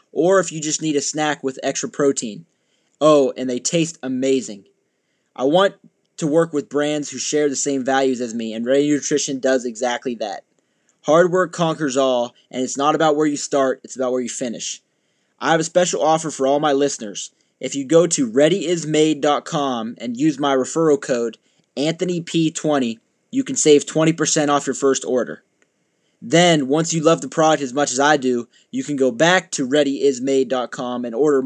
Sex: male